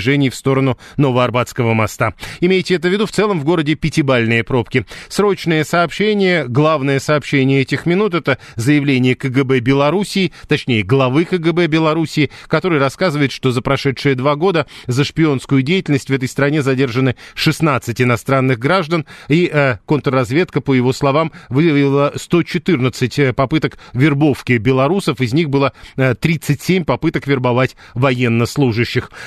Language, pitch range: Russian, 130-165 Hz